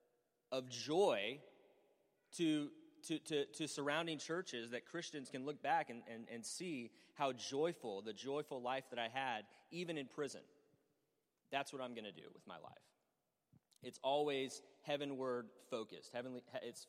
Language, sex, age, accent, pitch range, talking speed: English, male, 30-49, American, 110-140 Hz, 155 wpm